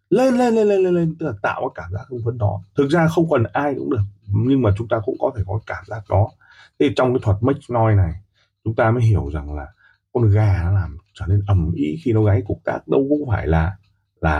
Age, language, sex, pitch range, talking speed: 30-49, Vietnamese, male, 95-125 Hz, 265 wpm